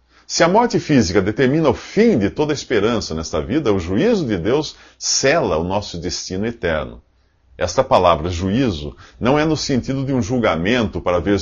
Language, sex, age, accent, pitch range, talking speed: English, male, 50-69, Brazilian, 75-130 Hz, 180 wpm